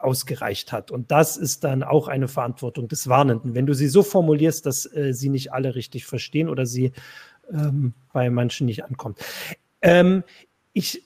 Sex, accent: male, German